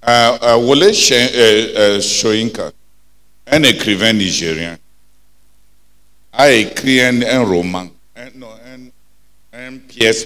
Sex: male